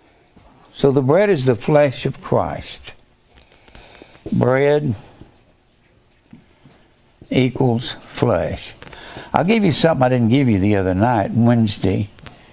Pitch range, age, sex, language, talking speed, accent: 105-145 Hz, 60-79, male, English, 110 wpm, American